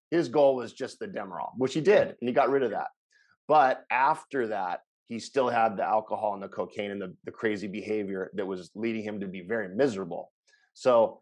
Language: English